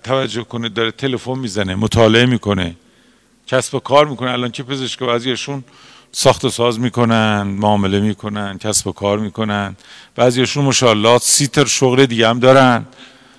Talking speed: 145 wpm